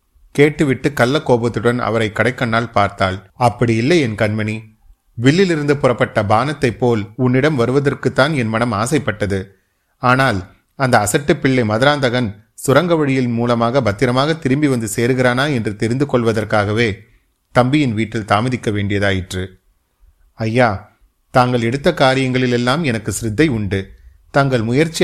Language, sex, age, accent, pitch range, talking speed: Tamil, male, 30-49, native, 105-135 Hz, 115 wpm